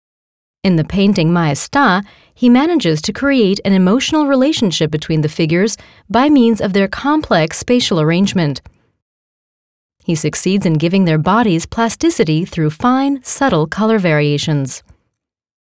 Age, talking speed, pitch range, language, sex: 30-49, 125 wpm, 165-245 Hz, English, female